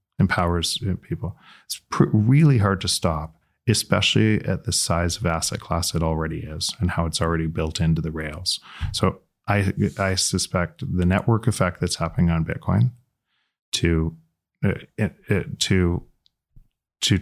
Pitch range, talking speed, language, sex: 85-100 Hz, 150 wpm, English, male